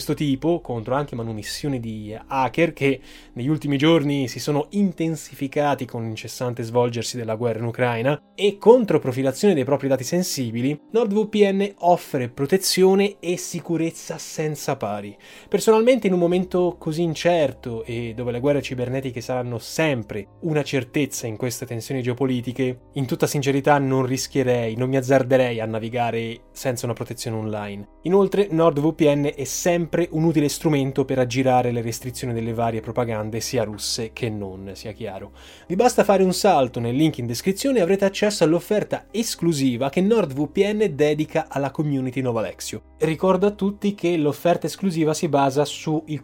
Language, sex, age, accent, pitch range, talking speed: Italian, male, 20-39, native, 120-165 Hz, 155 wpm